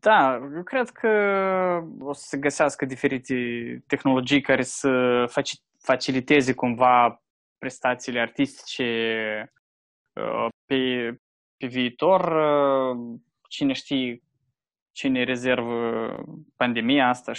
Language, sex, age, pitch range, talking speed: Romanian, male, 20-39, 120-150 Hz, 85 wpm